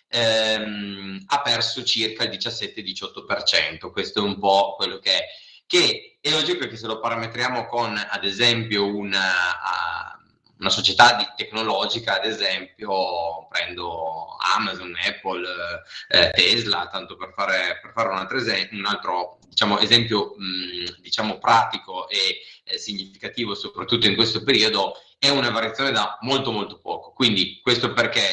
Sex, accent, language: male, native, Italian